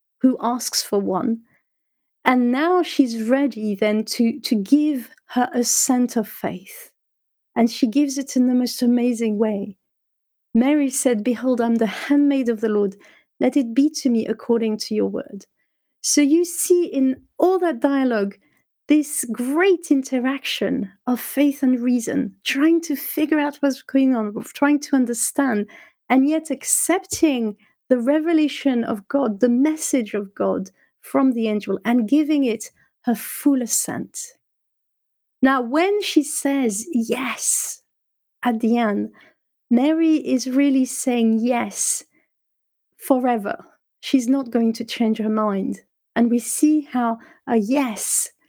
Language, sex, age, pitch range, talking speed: English, female, 40-59, 230-285 Hz, 140 wpm